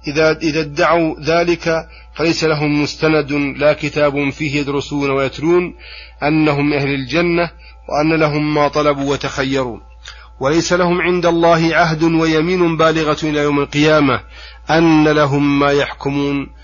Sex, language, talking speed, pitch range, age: male, Arabic, 120 wpm, 140-160 Hz, 40-59